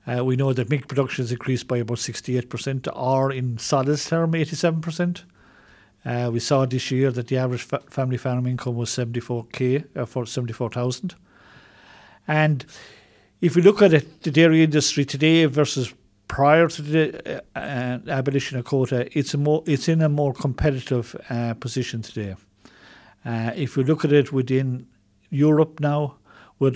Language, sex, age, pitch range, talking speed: English, male, 50-69, 120-150 Hz, 165 wpm